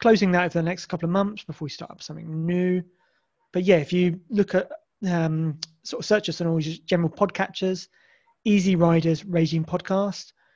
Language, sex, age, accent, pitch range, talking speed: English, male, 30-49, British, 160-195 Hz, 195 wpm